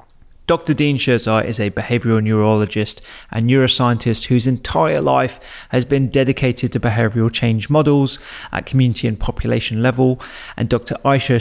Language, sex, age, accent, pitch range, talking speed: English, male, 30-49, British, 115-135 Hz, 140 wpm